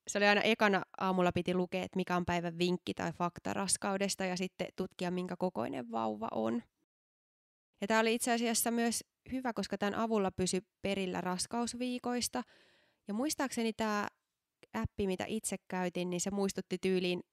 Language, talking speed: Finnish, 160 wpm